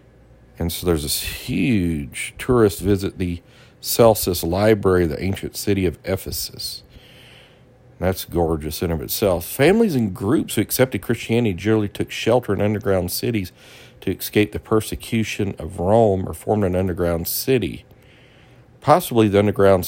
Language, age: English, 50-69